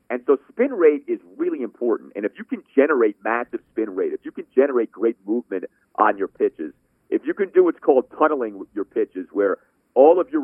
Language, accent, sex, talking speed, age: English, American, male, 215 wpm, 40-59